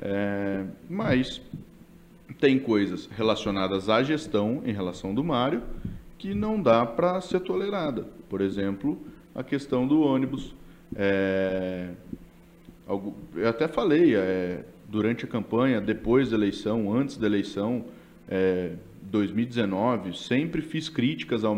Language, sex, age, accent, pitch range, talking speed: Portuguese, male, 20-39, Brazilian, 100-135 Hz, 120 wpm